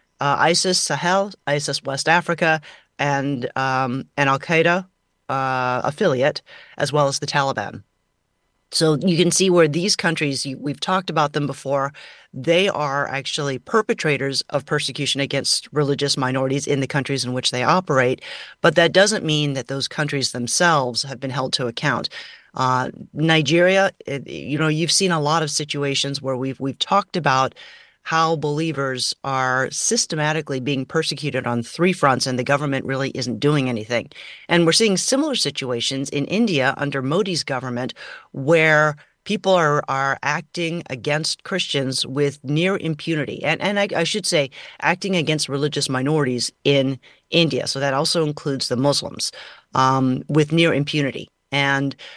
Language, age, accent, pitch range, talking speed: English, 30-49, American, 135-165 Hz, 150 wpm